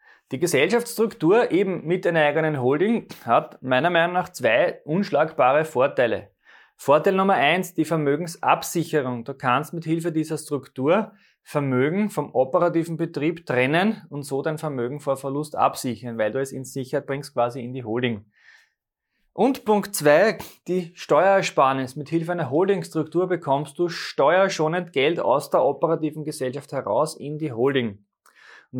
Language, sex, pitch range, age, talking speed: German, male, 130-170 Hz, 20-39, 145 wpm